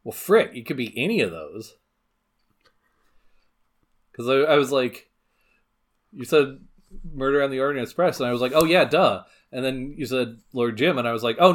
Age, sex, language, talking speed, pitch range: 30-49, male, English, 195 wpm, 100-140 Hz